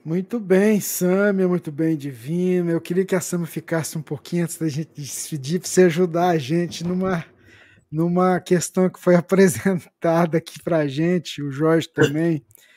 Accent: Brazilian